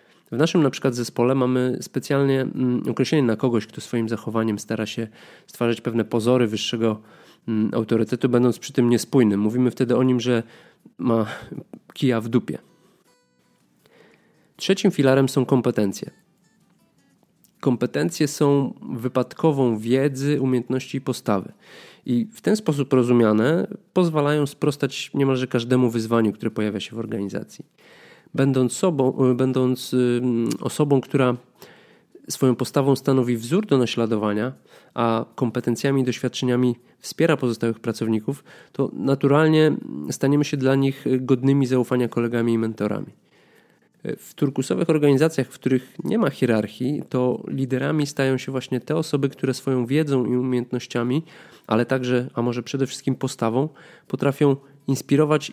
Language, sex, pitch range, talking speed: Polish, male, 120-140 Hz, 125 wpm